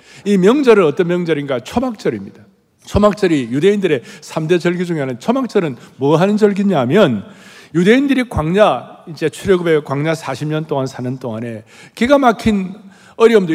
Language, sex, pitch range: Korean, male, 155-230 Hz